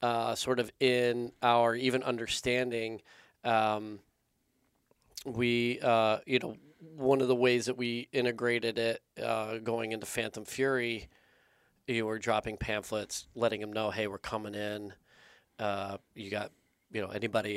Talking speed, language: 145 wpm, English